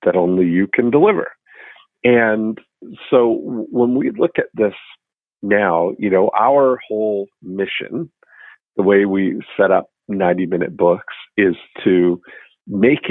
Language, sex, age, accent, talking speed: English, male, 50-69, American, 130 wpm